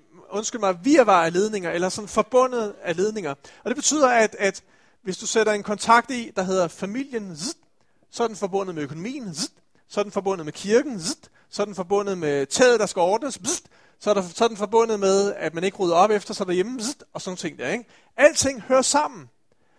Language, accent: Danish, native